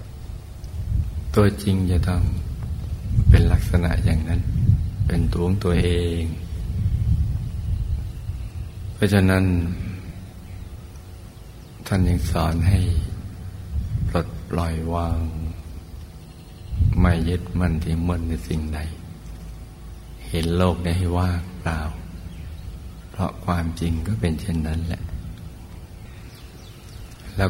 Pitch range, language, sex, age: 85-95 Hz, Thai, male, 60-79